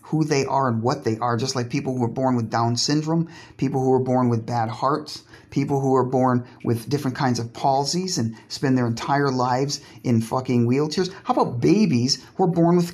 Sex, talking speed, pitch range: male, 220 wpm, 125-170 Hz